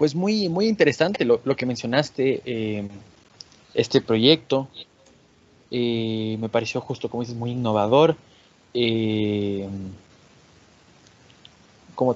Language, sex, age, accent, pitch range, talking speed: Spanish, male, 20-39, Mexican, 115-135 Hz, 105 wpm